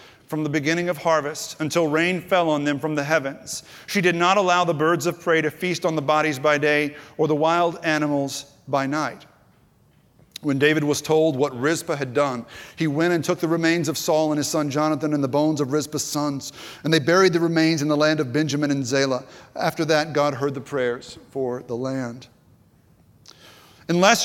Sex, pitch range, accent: male, 135-170 Hz, American